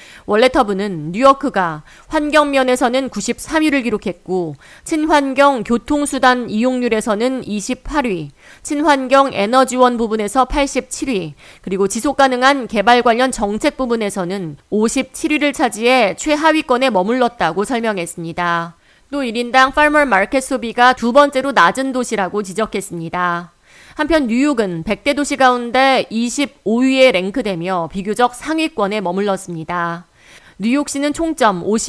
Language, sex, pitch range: Korean, female, 200-275 Hz